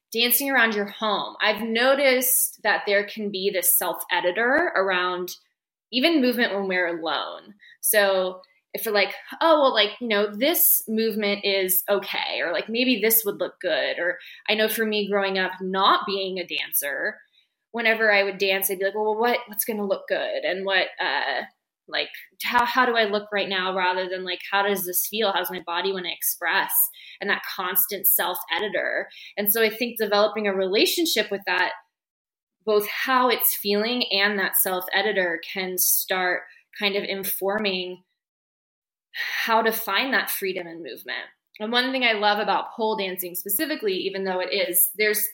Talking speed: 180 wpm